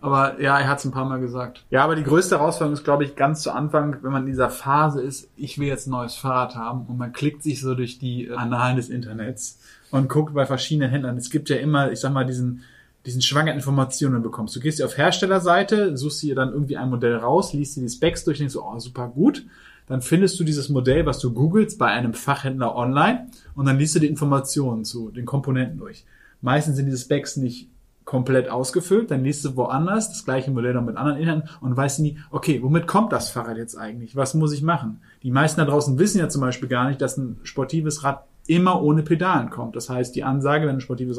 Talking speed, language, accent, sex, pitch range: 235 wpm, German, German, male, 125-150 Hz